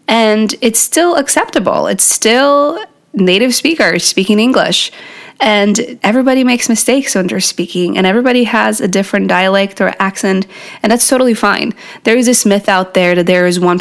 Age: 20-39